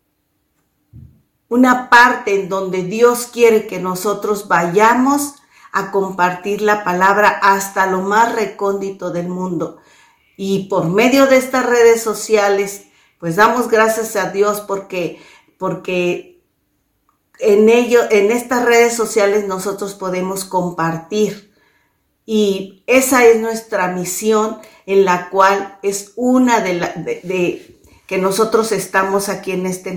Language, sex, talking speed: Spanish, female, 120 wpm